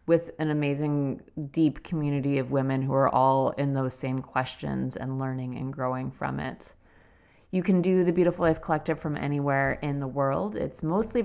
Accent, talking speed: American, 180 wpm